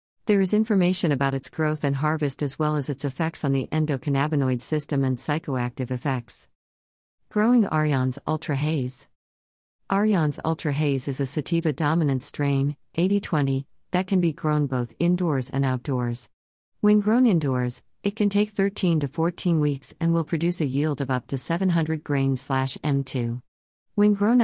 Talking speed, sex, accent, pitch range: 155 wpm, female, American, 130-165 Hz